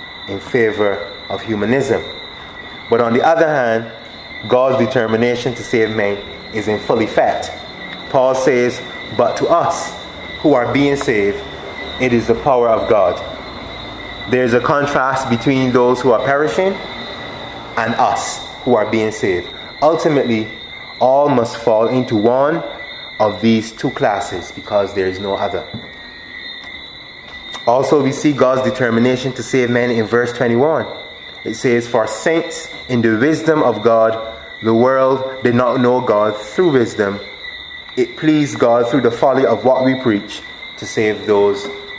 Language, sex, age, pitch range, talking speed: English, male, 20-39, 110-135 Hz, 150 wpm